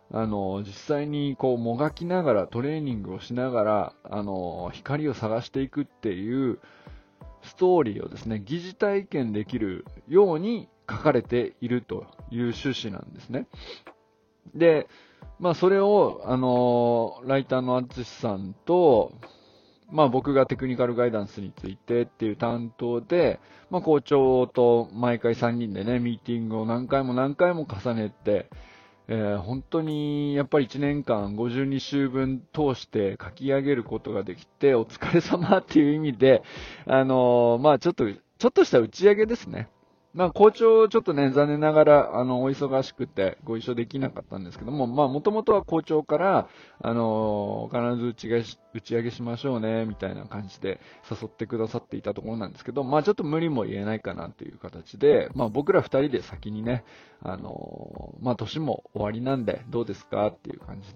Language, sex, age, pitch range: Japanese, male, 20-39, 115-150 Hz